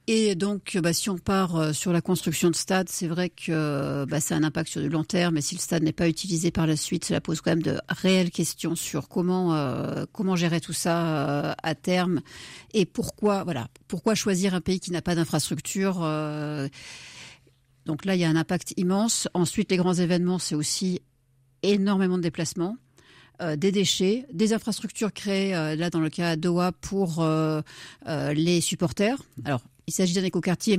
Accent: French